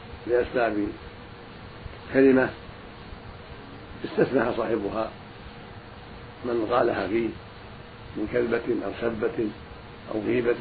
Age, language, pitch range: 50-69, Arabic, 105-120 Hz